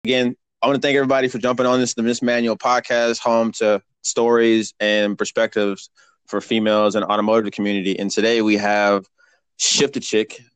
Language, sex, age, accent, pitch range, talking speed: English, male, 20-39, American, 105-120 Hz, 175 wpm